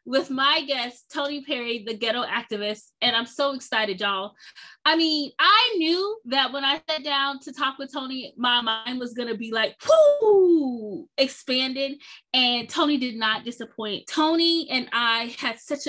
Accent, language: American, English